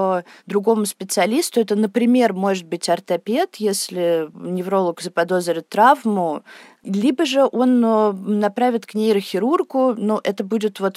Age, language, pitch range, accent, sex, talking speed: 20-39, Russian, 180-225 Hz, native, female, 115 wpm